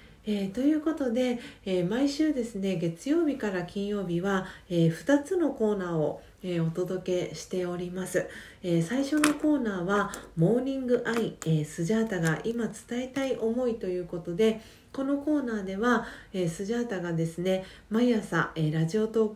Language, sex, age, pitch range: Japanese, female, 40-59, 170-230 Hz